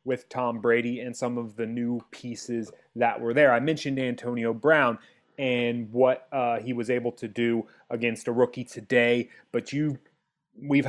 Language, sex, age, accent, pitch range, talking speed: English, male, 30-49, American, 125-150 Hz, 170 wpm